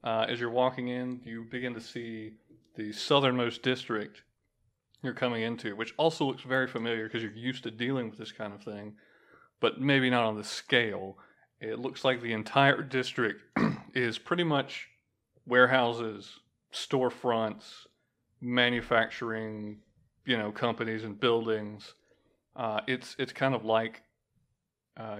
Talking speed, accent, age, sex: 145 wpm, American, 30-49, male